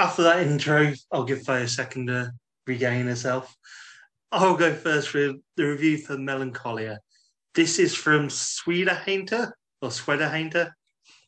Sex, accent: male, British